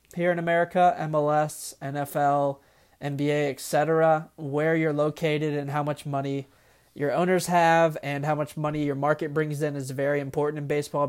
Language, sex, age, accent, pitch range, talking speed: English, male, 20-39, American, 140-160 Hz, 160 wpm